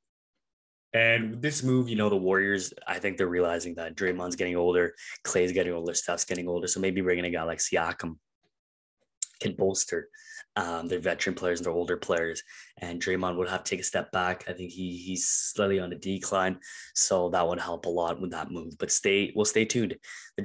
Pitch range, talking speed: 90-110 Hz, 205 wpm